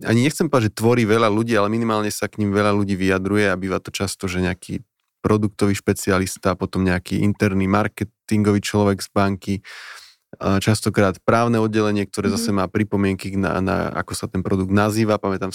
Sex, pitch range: male, 100-110 Hz